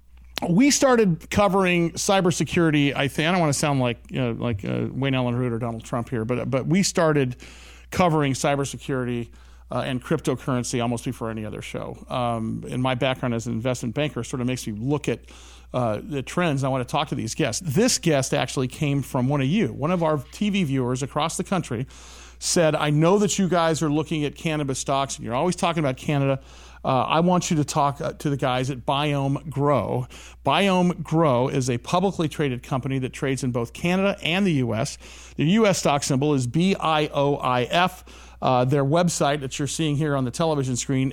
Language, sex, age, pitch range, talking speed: English, male, 40-59, 130-175 Hz, 205 wpm